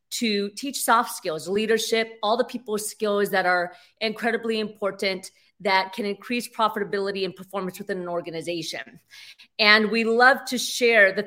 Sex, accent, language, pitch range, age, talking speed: female, American, English, 195-235 Hz, 30-49, 150 wpm